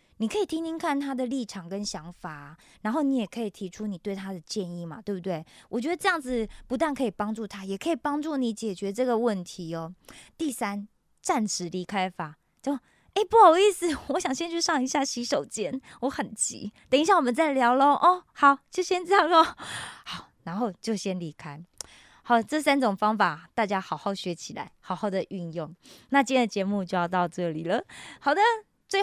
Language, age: Korean, 20-39